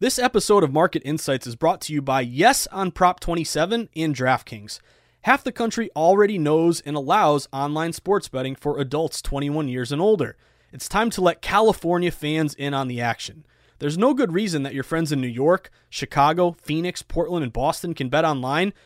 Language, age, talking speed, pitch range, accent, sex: English, 20-39, 190 wpm, 140-190 Hz, American, male